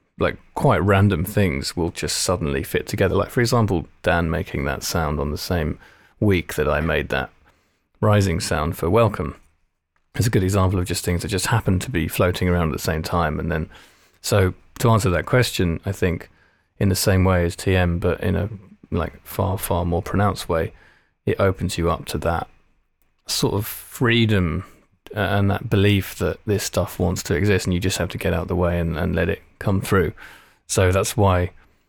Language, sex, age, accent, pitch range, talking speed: English, male, 20-39, British, 85-100 Hz, 200 wpm